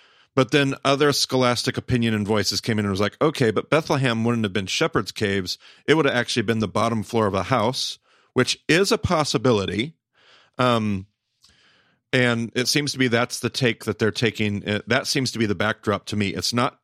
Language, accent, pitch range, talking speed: English, American, 105-130 Hz, 205 wpm